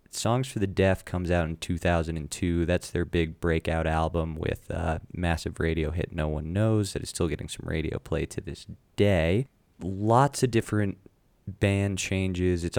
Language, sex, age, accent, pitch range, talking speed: English, male, 20-39, American, 80-95 Hz, 175 wpm